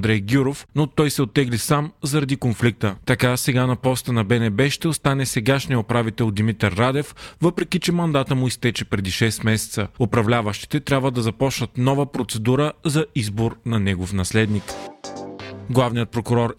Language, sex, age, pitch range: Bulgarian, male, 30-49, 110-140 Hz